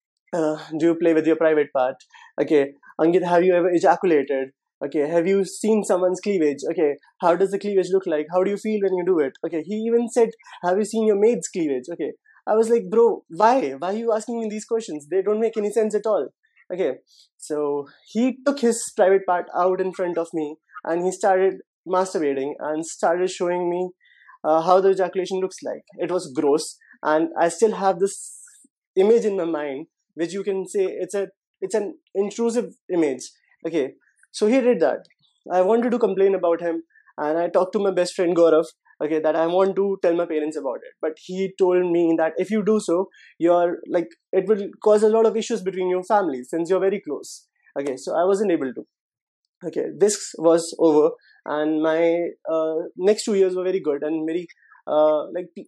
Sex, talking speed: male, 205 wpm